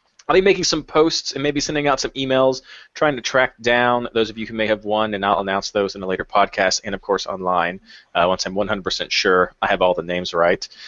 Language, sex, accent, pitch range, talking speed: English, male, American, 105-140 Hz, 250 wpm